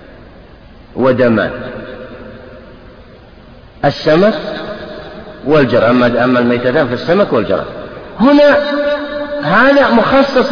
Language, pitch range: Arabic, 175-265 Hz